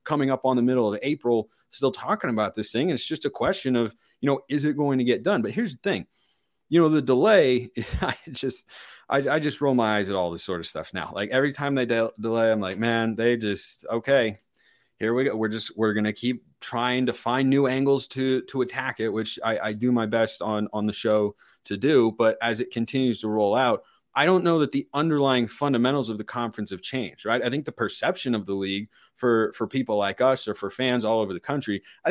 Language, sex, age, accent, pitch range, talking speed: English, male, 30-49, American, 110-135 Hz, 240 wpm